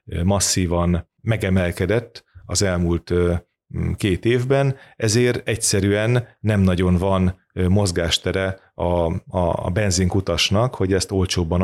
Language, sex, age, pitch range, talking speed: Hungarian, male, 30-49, 90-110 Hz, 95 wpm